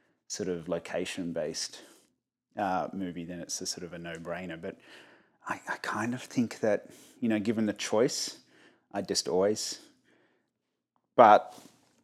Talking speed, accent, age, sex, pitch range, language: 135 wpm, Australian, 30-49, male, 90-110 Hz, English